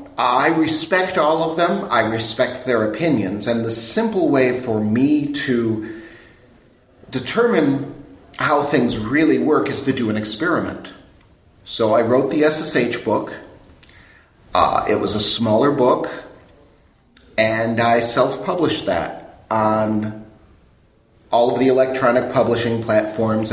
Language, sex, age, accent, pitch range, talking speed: English, male, 40-59, American, 110-130 Hz, 125 wpm